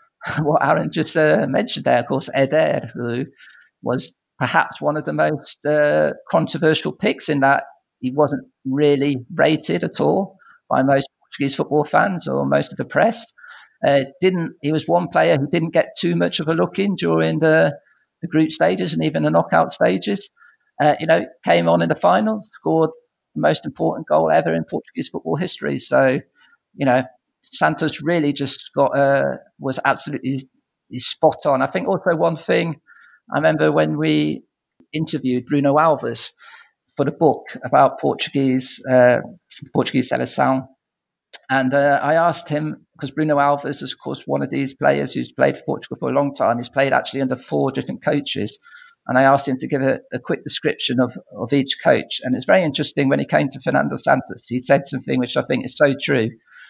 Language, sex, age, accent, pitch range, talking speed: English, male, 50-69, British, 130-160 Hz, 185 wpm